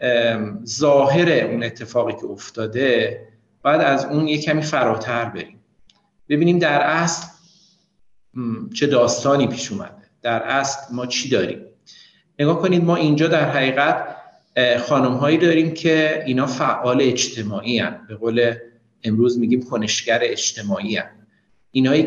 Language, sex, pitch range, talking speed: Persian, male, 115-150 Hz, 120 wpm